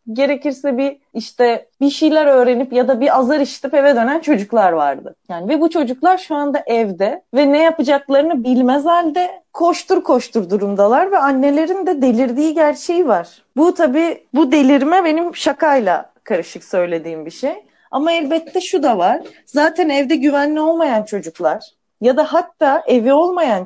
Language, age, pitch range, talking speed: Turkish, 30-49, 220-310 Hz, 155 wpm